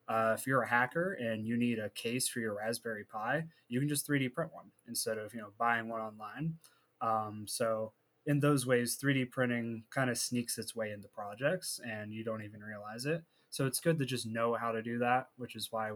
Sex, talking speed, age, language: male, 225 wpm, 20-39, English